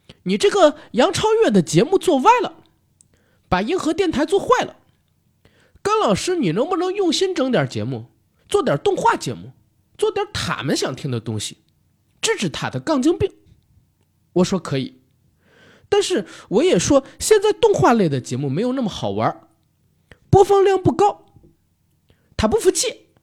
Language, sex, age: Chinese, male, 20-39